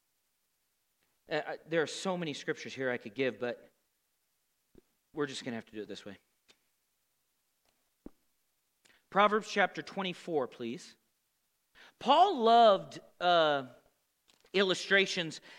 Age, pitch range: 40-59, 155-220 Hz